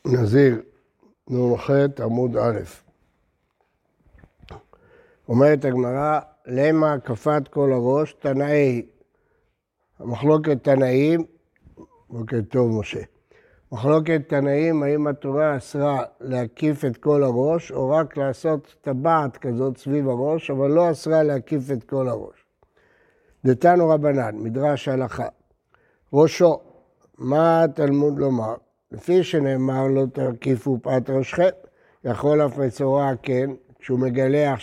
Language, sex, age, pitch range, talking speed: Hebrew, male, 60-79, 130-160 Hz, 105 wpm